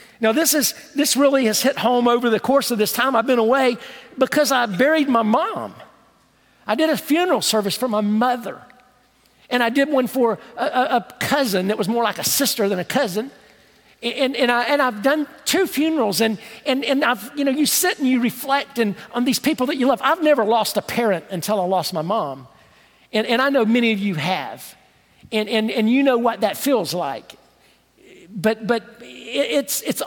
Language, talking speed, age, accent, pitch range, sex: English, 210 wpm, 50-69, American, 215-275 Hz, male